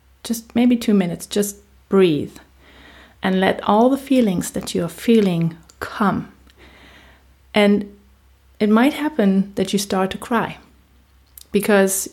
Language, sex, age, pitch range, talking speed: English, female, 30-49, 165-215 Hz, 125 wpm